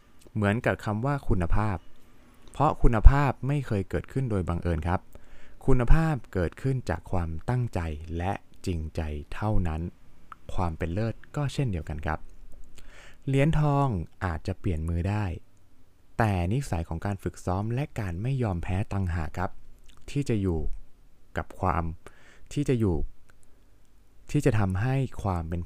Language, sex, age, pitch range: Thai, male, 20-39, 85-115 Hz